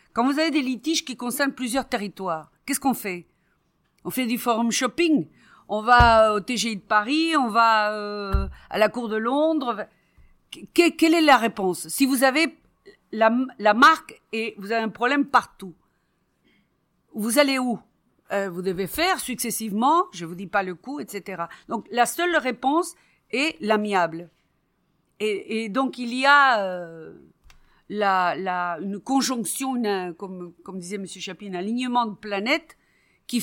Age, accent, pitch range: 50-69, French, 190-265 Hz